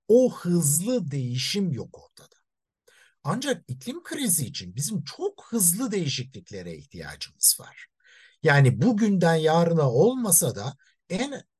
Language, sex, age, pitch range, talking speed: Turkish, male, 60-79, 135-200 Hz, 110 wpm